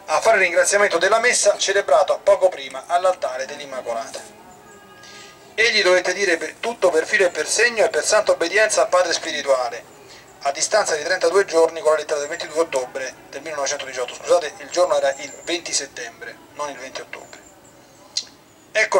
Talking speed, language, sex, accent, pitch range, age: 165 wpm, Italian, male, native, 155-200 Hz, 30-49